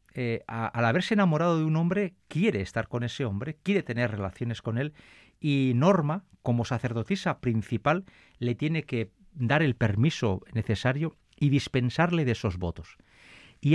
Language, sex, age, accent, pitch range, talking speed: Spanish, male, 40-59, Spanish, 105-160 Hz, 155 wpm